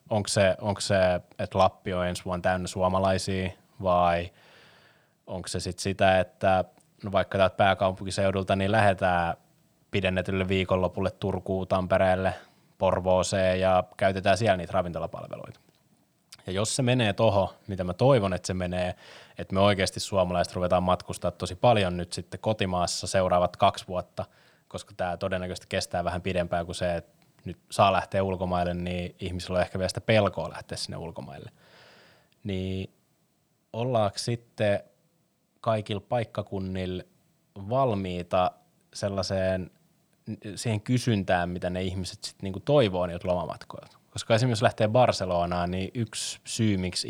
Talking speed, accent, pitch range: 140 wpm, native, 90-105 Hz